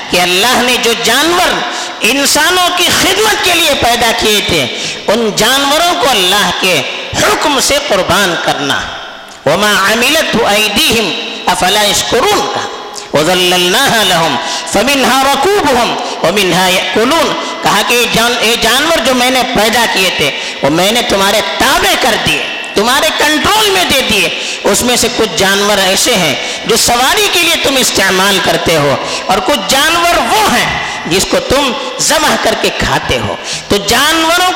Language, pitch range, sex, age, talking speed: Urdu, 210-340 Hz, female, 50-69, 135 wpm